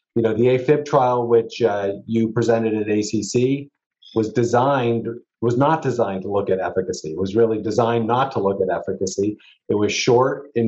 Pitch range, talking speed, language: 100-125 Hz, 185 wpm, English